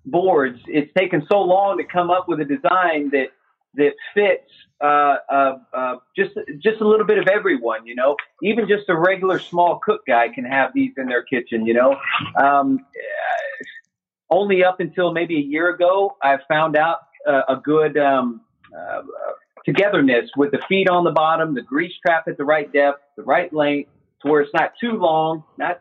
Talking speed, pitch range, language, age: 190 wpm, 140-175 Hz, English, 40-59